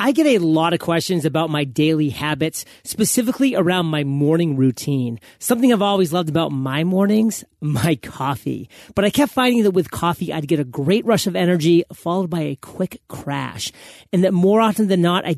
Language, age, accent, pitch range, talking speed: English, 30-49, American, 150-195 Hz, 195 wpm